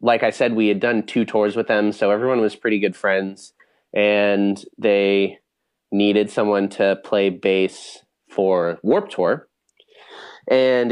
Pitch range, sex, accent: 100-125 Hz, male, American